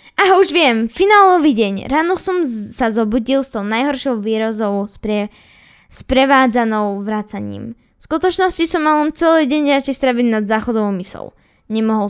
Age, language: 10-29, Slovak